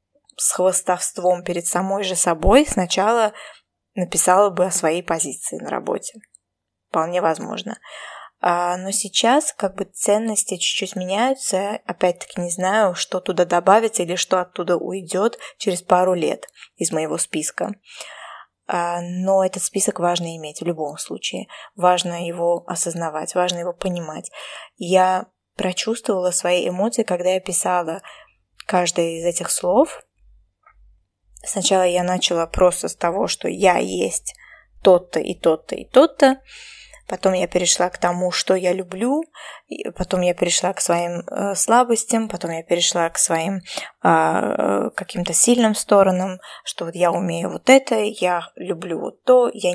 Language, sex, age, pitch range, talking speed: Russian, female, 20-39, 175-205 Hz, 135 wpm